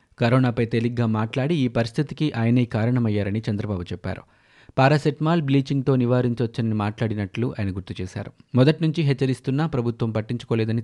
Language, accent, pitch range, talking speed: Telugu, native, 110-130 Hz, 110 wpm